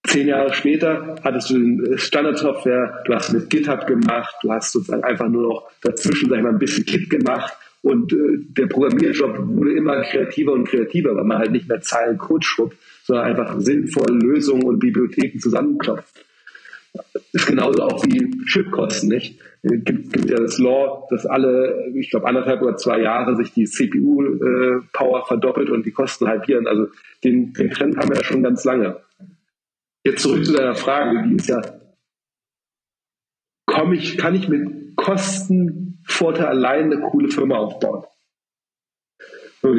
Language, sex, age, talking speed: German, male, 40-59, 165 wpm